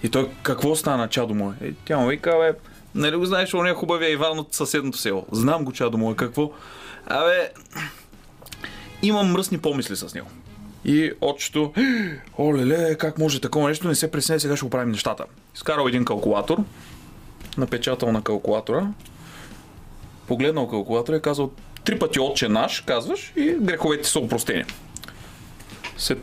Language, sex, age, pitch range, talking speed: Bulgarian, male, 20-39, 115-160 Hz, 160 wpm